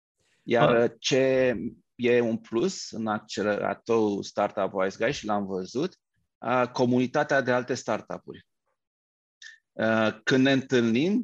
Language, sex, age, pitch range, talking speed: Romanian, male, 30-49, 110-125 Hz, 105 wpm